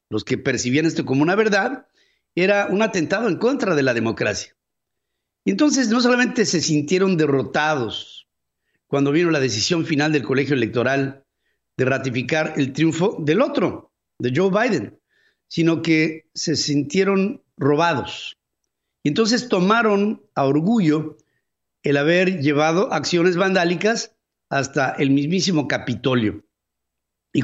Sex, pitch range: male, 135-200 Hz